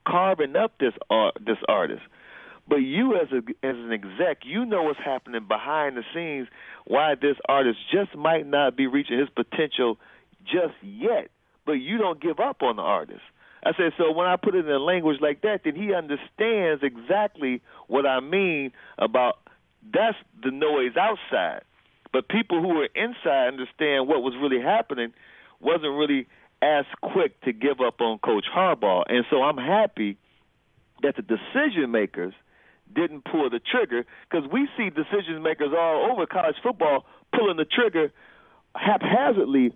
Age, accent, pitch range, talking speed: 40-59, American, 135-210 Hz, 160 wpm